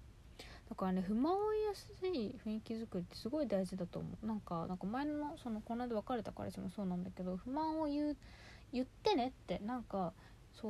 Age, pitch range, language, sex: 20-39, 185-255 Hz, Japanese, female